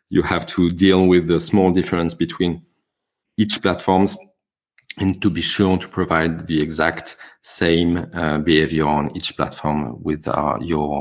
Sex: male